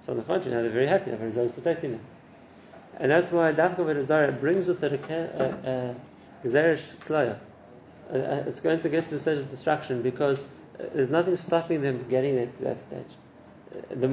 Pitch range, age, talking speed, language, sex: 130-165 Hz, 30-49, 175 wpm, English, male